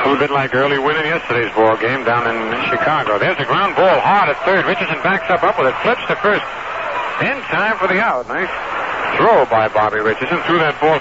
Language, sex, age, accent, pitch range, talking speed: English, male, 60-79, American, 125-180 Hz, 230 wpm